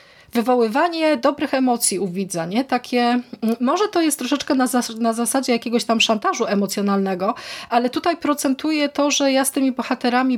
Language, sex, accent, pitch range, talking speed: Polish, female, native, 210-255 Hz, 145 wpm